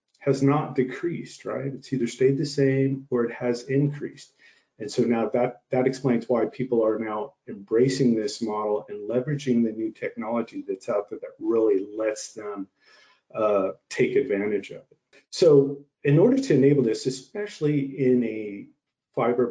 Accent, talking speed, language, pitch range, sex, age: American, 165 wpm, English, 110-140 Hz, male, 40-59